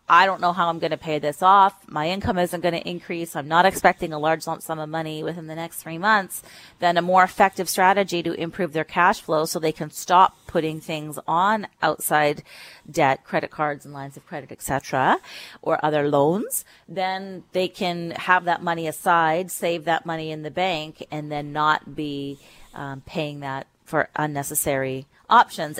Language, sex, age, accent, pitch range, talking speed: English, female, 30-49, American, 155-190 Hz, 195 wpm